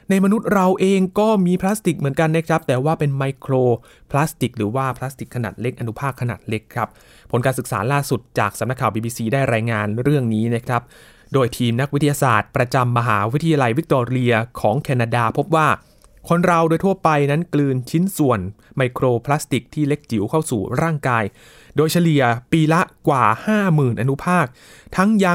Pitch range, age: 120-155 Hz, 20-39